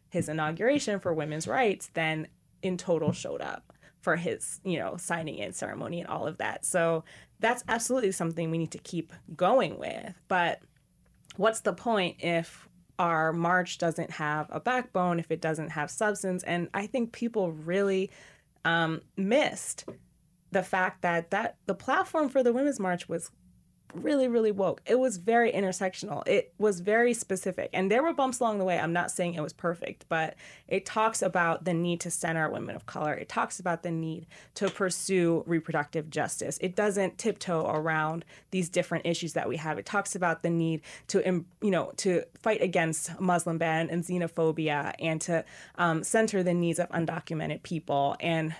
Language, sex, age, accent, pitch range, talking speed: English, female, 20-39, American, 165-200 Hz, 180 wpm